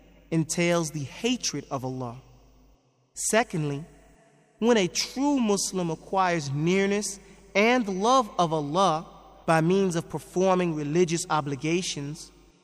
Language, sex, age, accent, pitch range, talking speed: English, male, 30-49, American, 160-200 Hz, 105 wpm